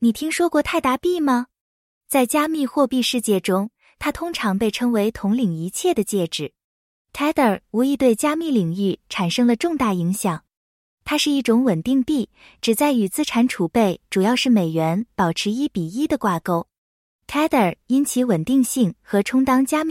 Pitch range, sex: 200-275 Hz, female